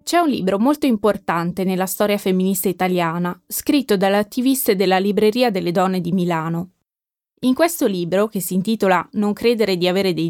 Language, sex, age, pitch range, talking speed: Italian, female, 20-39, 185-245 Hz, 165 wpm